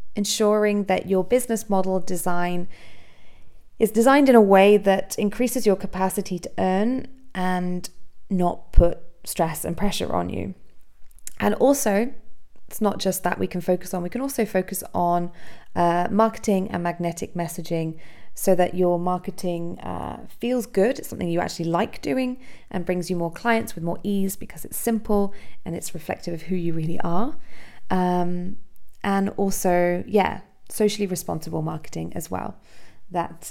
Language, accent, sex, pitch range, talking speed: English, British, female, 170-205 Hz, 155 wpm